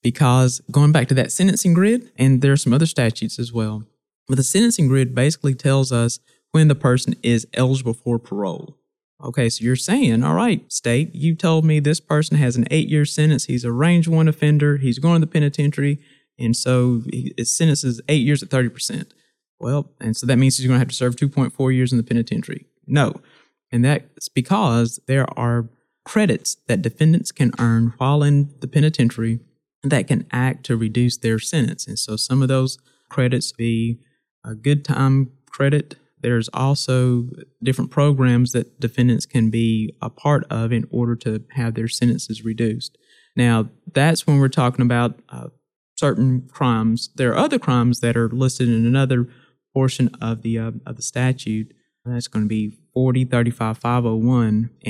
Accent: American